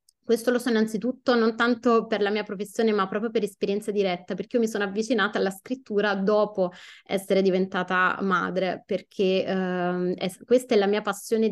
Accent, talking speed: native, 170 wpm